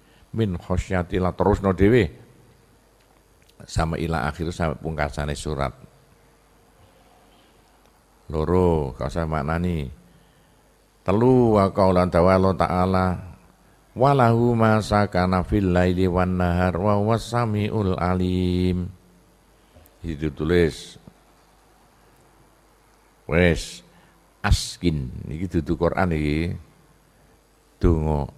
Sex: male